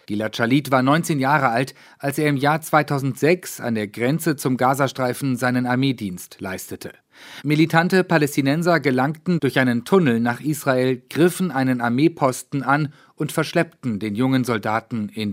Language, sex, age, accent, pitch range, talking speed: German, male, 40-59, German, 120-150 Hz, 145 wpm